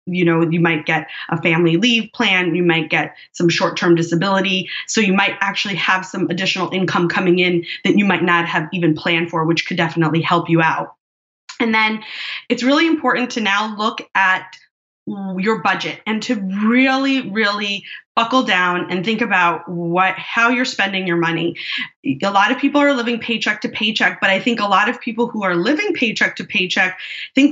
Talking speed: 190 wpm